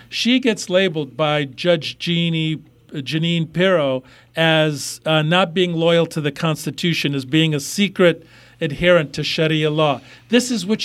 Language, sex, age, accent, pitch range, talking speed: English, male, 50-69, American, 140-175 Hz, 150 wpm